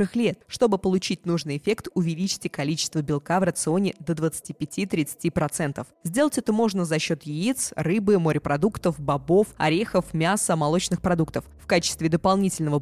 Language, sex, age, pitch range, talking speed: Russian, female, 20-39, 160-200 Hz, 130 wpm